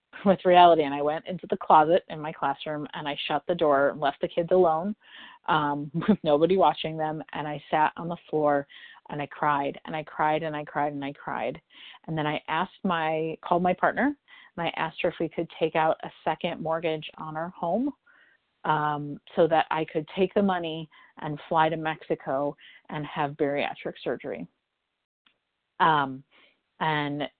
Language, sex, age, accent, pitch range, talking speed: English, female, 30-49, American, 150-175 Hz, 185 wpm